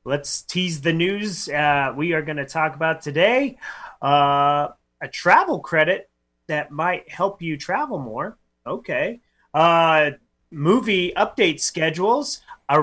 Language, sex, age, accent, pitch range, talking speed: English, male, 30-49, American, 135-180 Hz, 130 wpm